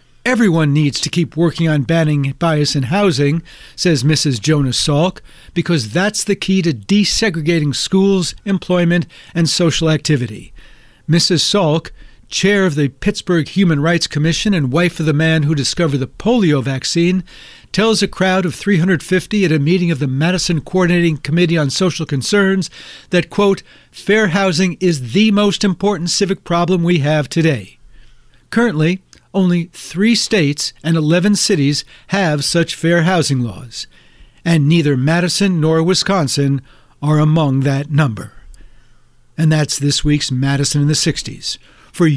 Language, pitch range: English, 145-185 Hz